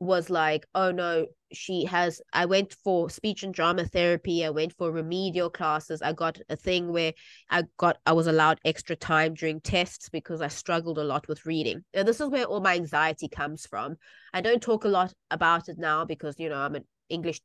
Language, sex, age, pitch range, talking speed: English, female, 20-39, 160-185 Hz, 215 wpm